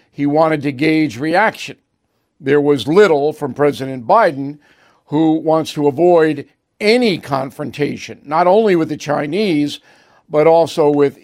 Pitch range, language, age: 145-185 Hz, English, 60-79